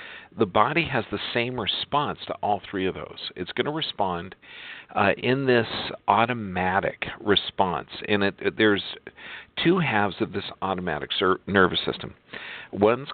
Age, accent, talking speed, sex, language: 50-69, American, 135 wpm, male, English